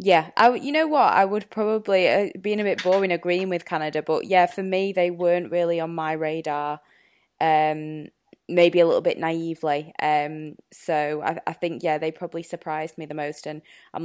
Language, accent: English, British